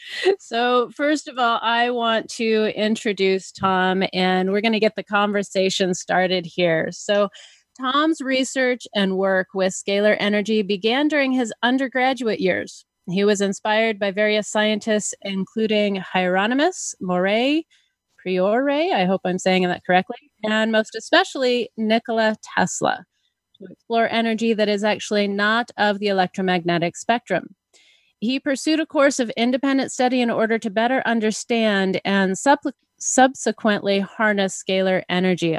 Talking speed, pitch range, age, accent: 135 wpm, 190-240 Hz, 30-49, American